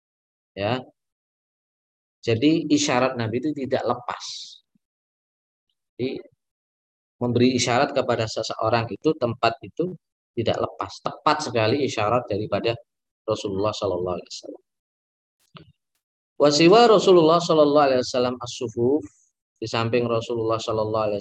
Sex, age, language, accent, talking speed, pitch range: male, 20-39, Indonesian, native, 100 wpm, 110-140 Hz